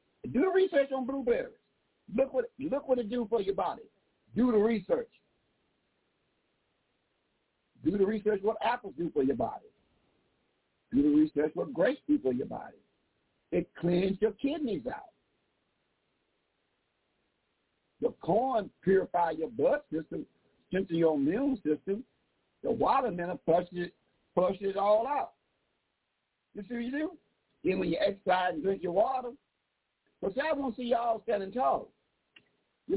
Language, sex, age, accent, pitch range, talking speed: English, male, 60-79, American, 190-275 Hz, 145 wpm